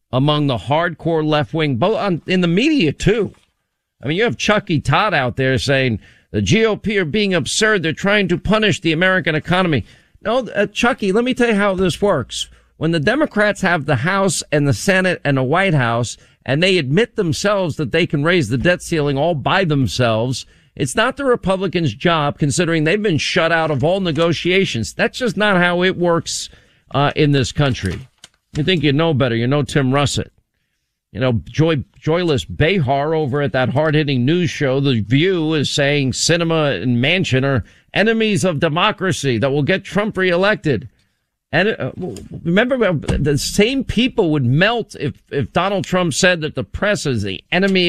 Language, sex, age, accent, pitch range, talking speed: English, male, 50-69, American, 130-185 Hz, 185 wpm